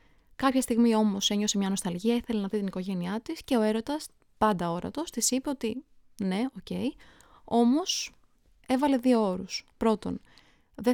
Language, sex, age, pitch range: Greek, female, 20-39, 205-250 Hz